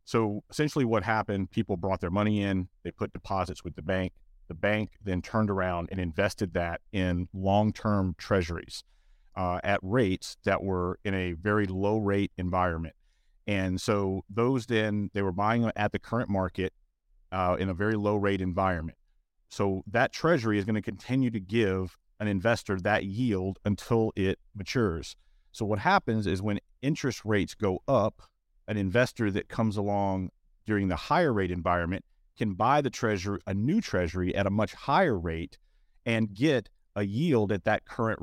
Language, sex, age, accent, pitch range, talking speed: English, male, 40-59, American, 95-115 Hz, 170 wpm